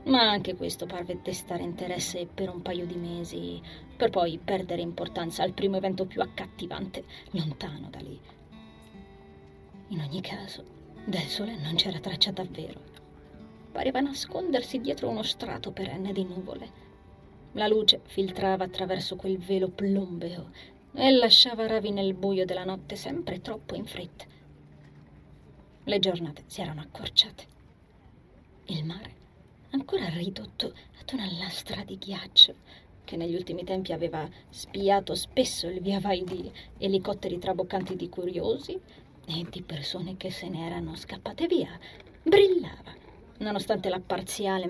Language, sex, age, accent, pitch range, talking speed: Italian, female, 20-39, native, 170-200 Hz, 135 wpm